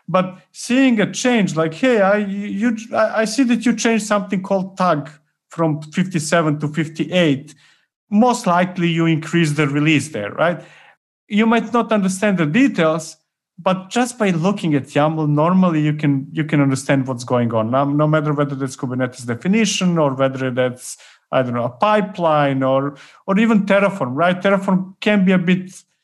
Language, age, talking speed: English, 50-69, 175 wpm